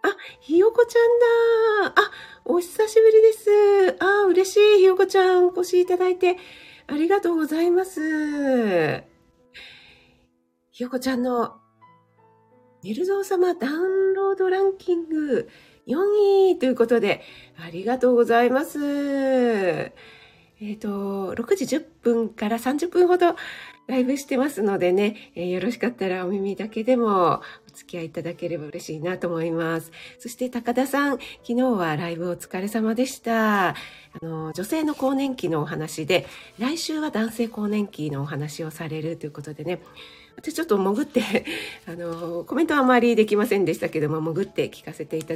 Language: Japanese